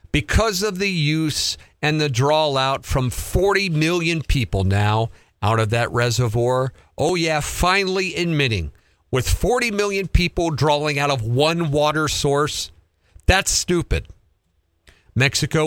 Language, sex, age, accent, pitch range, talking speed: English, male, 50-69, American, 115-165 Hz, 130 wpm